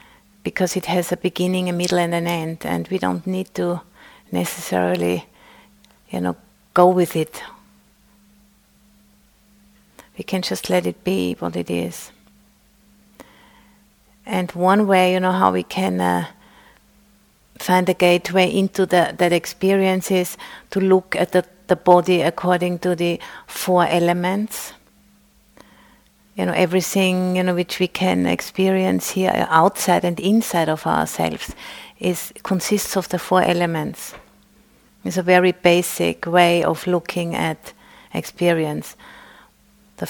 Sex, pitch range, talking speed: female, 170-190 Hz, 130 wpm